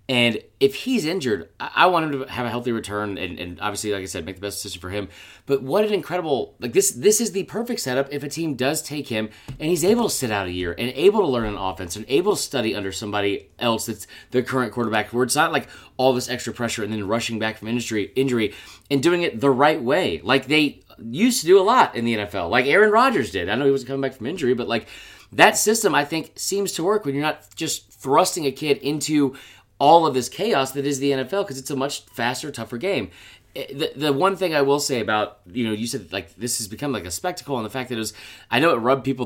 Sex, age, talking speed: male, 30-49, 260 wpm